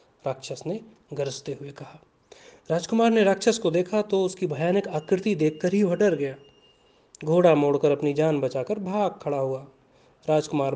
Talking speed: 150 wpm